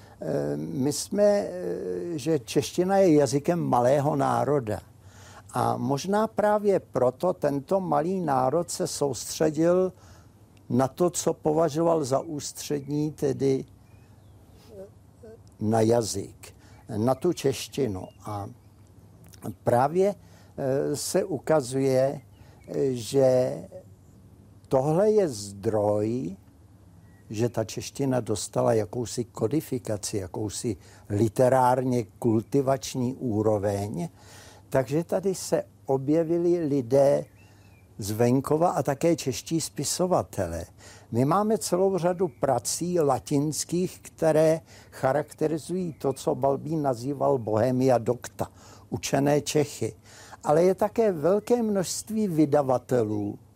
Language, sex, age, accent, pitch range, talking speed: Czech, male, 60-79, native, 105-155 Hz, 85 wpm